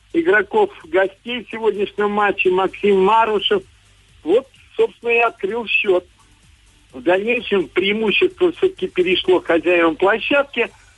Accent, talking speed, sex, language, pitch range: native, 105 wpm, male, Russian, 185-280 Hz